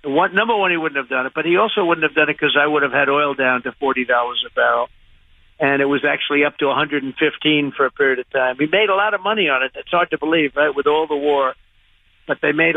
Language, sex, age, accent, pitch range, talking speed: English, male, 60-79, American, 140-165 Hz, 275 wpm